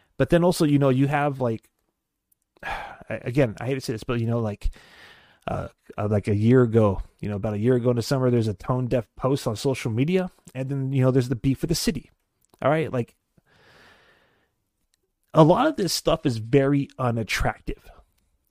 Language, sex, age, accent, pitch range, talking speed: English, male, 30-49, American, 115-140 Hz, 200 wpm